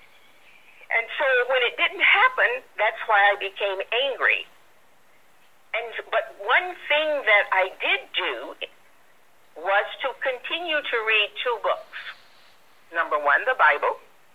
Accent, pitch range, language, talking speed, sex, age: American, 205-315 Hz, English, 125 wpm, female, 50-69